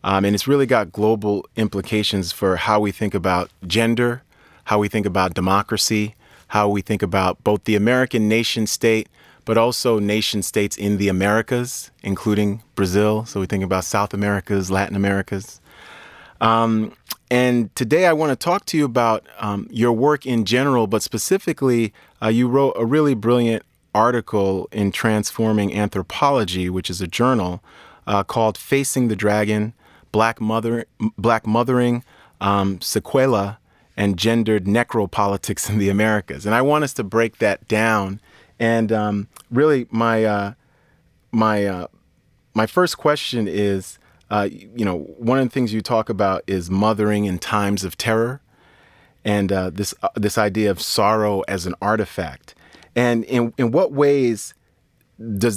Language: English